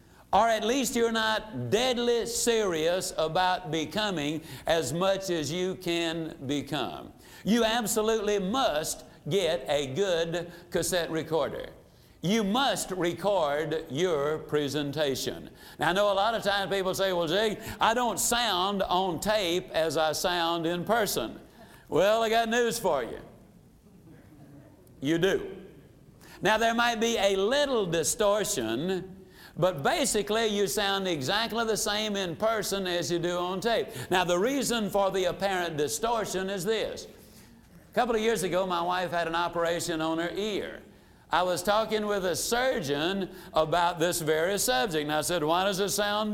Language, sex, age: English, male, 60-79